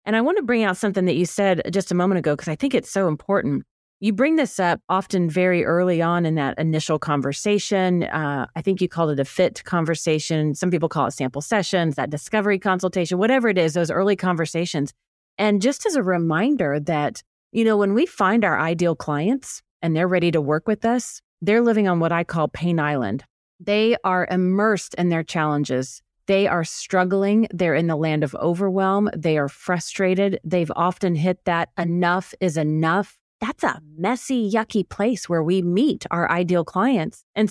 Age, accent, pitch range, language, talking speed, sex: 30-49, American, 165-205 Hz, English, 195 wpm, female